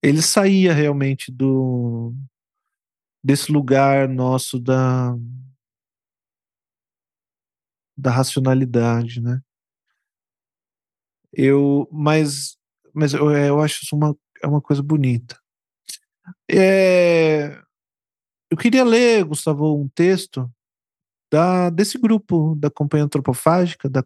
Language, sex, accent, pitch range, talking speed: Portuguese, male, Brazilian, 125-155 Hz, 90 wpm